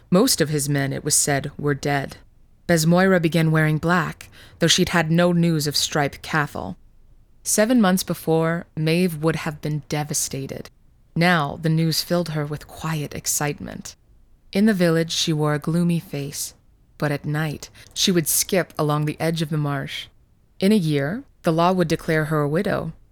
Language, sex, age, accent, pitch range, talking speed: English, female, 20-39, American, 150-180 Hz, 175 wpm